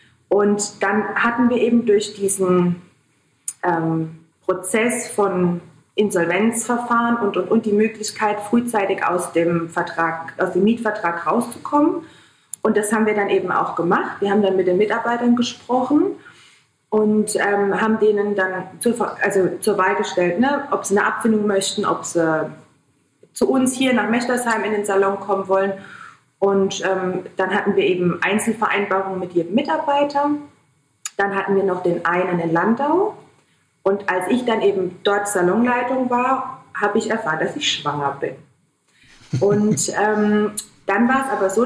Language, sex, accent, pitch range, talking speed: German, female, German, 185-230 Hz, 155 wpm